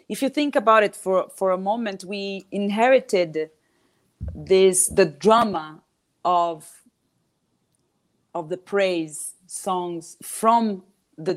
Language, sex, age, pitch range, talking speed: English, female, 40-59, 175-215 Hz, 110 wpm